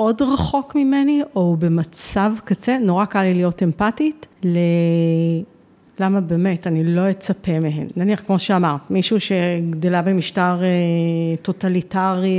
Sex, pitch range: female, 180-220 Hz